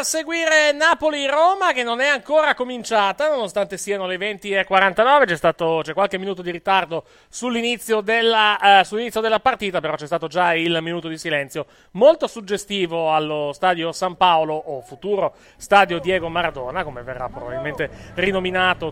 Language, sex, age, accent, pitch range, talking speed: Italian, male, 30-49, native, 165-220 Hz, 150 wpm